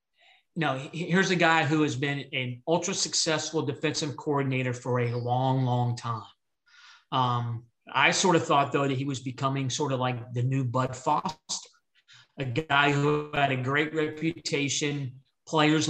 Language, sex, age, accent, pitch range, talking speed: English, male, 40-59, American, 125-150 Hz, 155 wpm